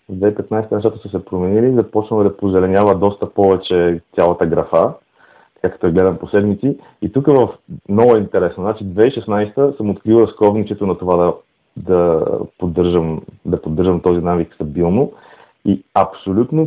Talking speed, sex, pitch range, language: 145 wpm, male, 95-110 Hz, Bulgarian